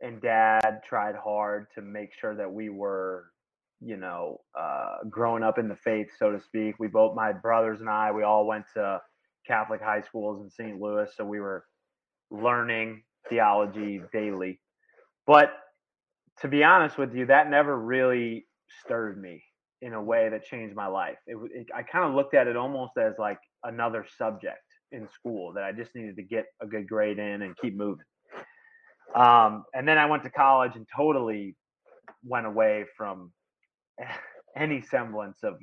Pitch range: 105-130 Hz